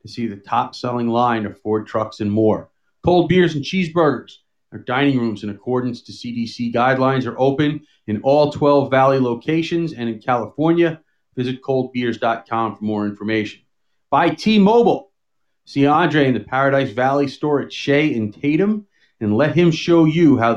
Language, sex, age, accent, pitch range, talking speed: English, male, 40-59, American, 120-150 Hz, 165 wpm